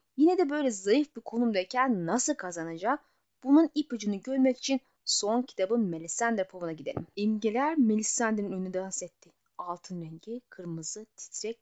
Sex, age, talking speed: female, 30-49, 135 wpm